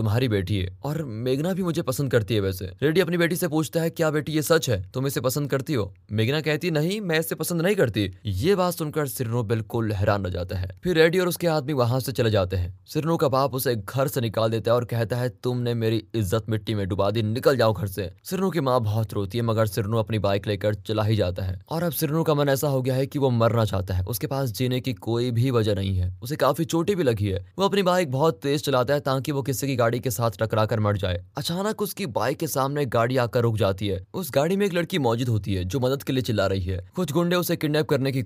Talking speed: 225 wpm